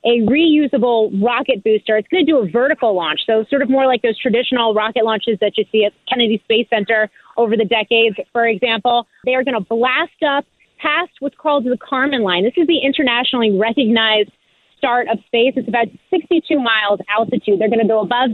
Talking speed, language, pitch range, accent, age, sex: 205 wpm, English, 220-270 Hz, American, 30-49, female